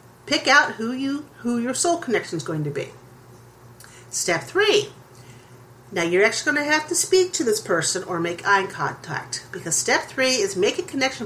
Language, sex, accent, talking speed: English, female, American, 185 wpm